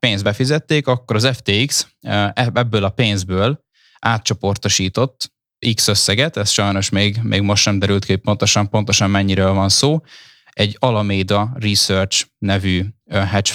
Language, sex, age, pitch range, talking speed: Hungarian, male, 10-29, 95-120 Hz, 130 wpm